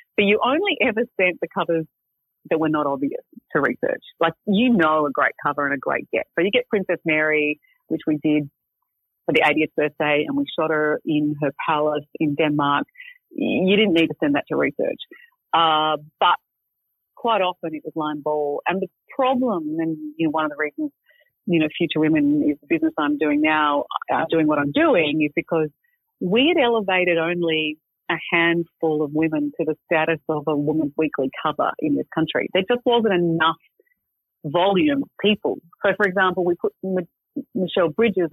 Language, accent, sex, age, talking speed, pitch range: English, Australian, female, 40-59, 185 wpm, 155-190 Hz